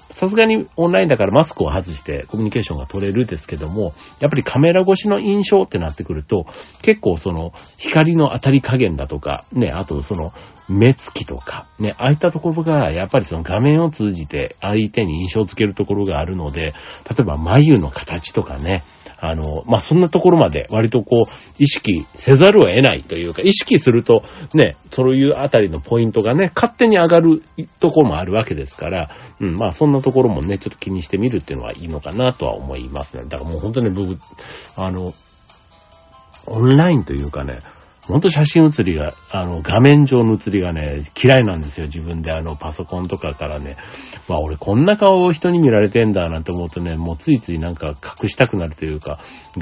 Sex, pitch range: male, 80-130 Hz